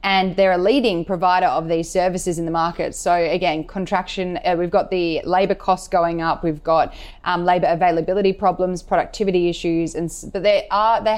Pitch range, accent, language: 165-185 Hz, Australian, English